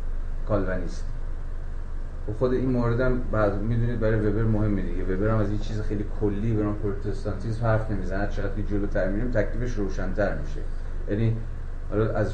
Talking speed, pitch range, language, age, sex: 140 wpm, 75-110 Hz, Persian, 30-49, male